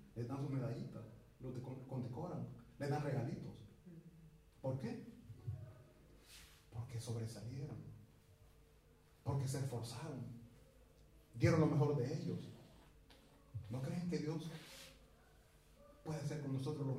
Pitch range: 135-185 Hz